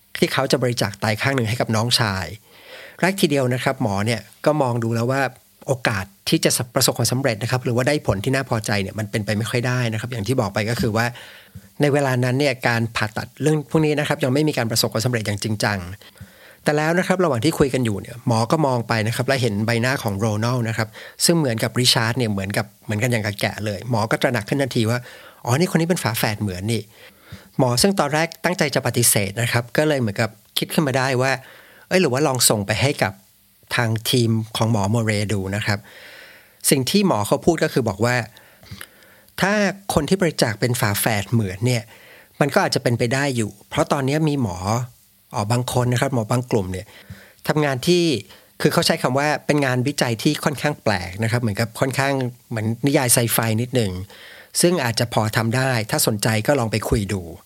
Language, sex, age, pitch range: English, male, 60-79, 110-140 Hz